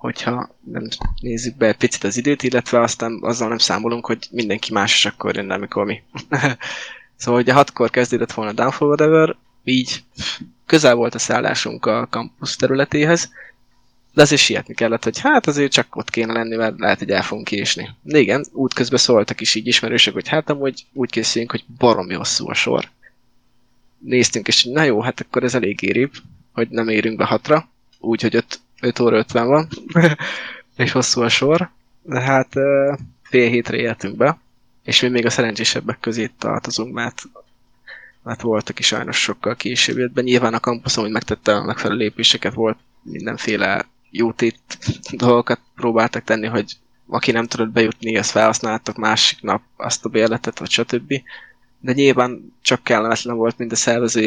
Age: 20-39